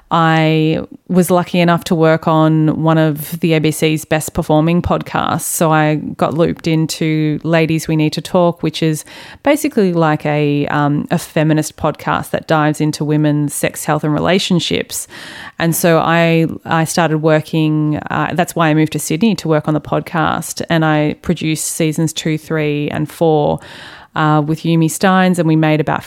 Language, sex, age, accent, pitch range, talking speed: English, female, 30-49, Australian, 155-175 Hz, 175 wpm